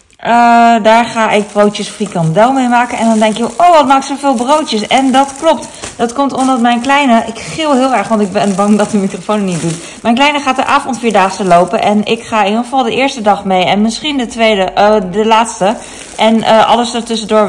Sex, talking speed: female, 230 wpm